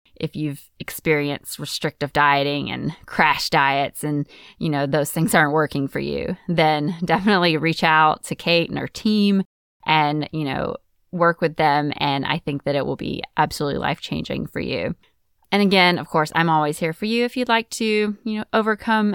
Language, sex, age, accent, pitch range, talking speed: English, female, 20-39, American, 155-210 Hz, 190 wpm